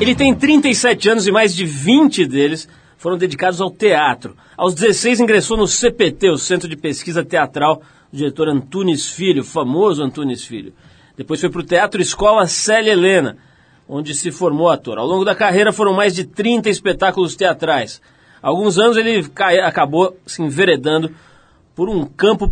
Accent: Brazilian